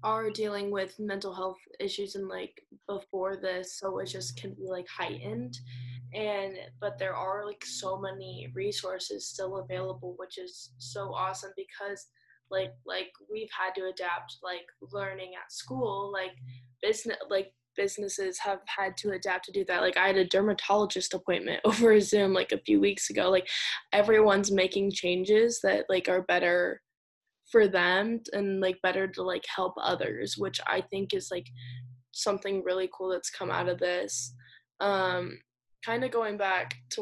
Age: 10-29